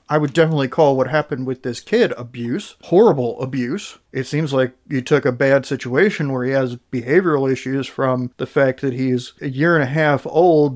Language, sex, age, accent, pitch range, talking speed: English, male, 40-59, American, 135-155 Hz, 200 wpm